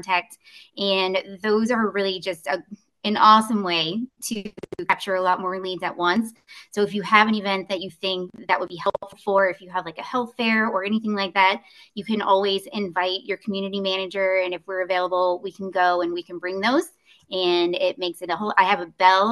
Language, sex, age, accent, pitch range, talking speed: English, female, 20-39, American, 185-220 Hz, 225 wpm